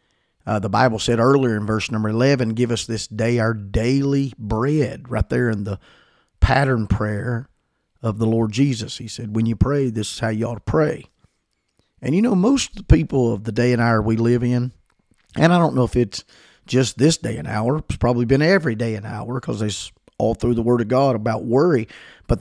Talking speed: 215 wpm